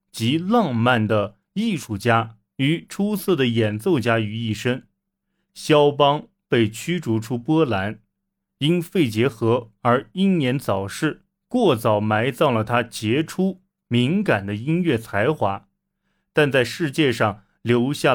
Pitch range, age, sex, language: 110-180 Hz, 30-49, male, Chinese